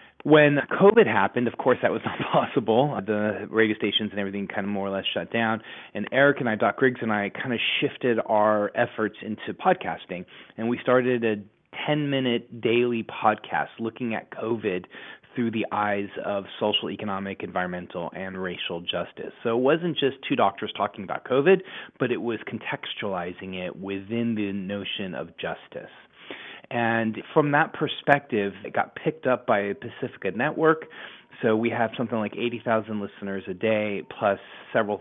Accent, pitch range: American, 100-130 Hz